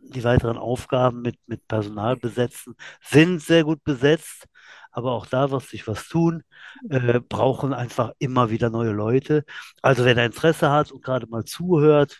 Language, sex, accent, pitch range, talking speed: German, male, German, 120-145 Hz, 165 wpm